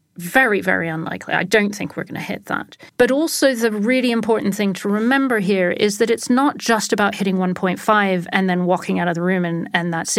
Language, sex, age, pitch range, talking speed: English, female, 40-59, 190-225 Hz, 225 wpm